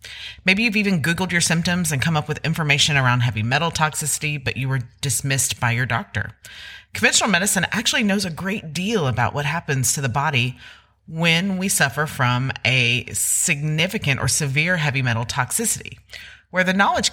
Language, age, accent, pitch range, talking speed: English, 30-49, American, 130-190 Hz, 170 wpm